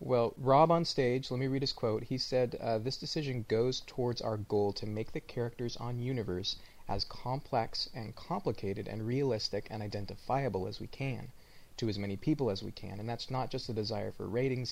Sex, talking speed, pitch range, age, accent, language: male, 205 wpm, 105-120 Hz, 30-49, American, English